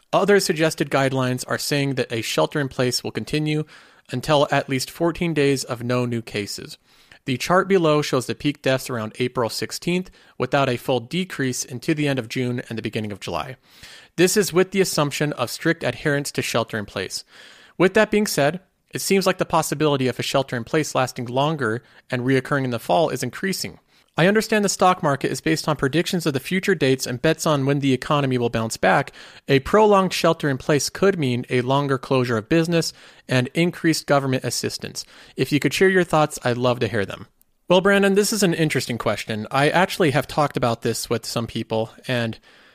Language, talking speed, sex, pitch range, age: English, 195 wpm, male, 125-165 Hz, 30-49